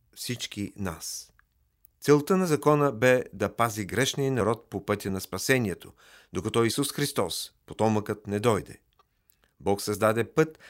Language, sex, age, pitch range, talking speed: Bulgarian, male, 50-69, 95-130 Hz, 130 wpm